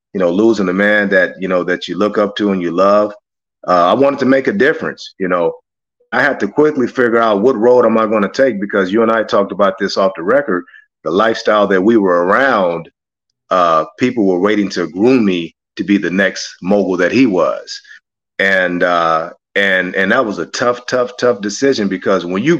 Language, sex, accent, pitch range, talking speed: English, male, American, 105-155 Hz, 220 wpm